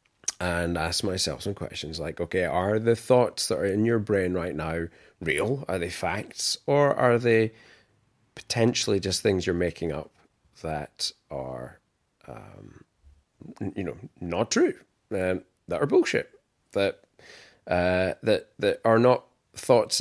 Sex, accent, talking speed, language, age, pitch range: male, British, 145 wpm, English, 30-49, 85-120 Hz